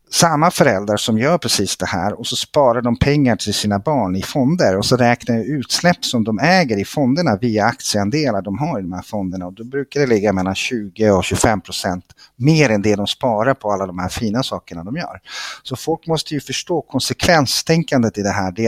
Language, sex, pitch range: Swedish, male, 100-135 Hz